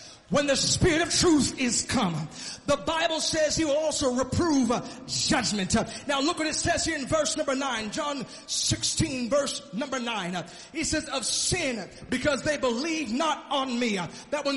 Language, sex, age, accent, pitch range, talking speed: English, male, 30-49, American, 275-325 Hz, 175 wpm